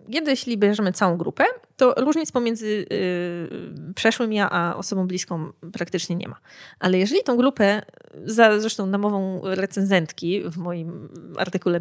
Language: Polish